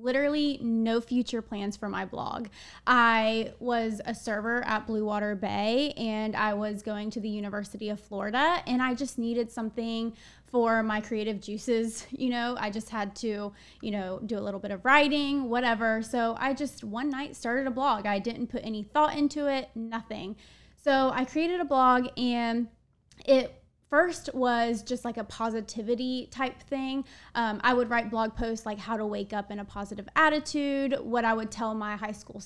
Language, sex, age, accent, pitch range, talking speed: English, female, 20-39, American, 220-255 Hz, 185 wpm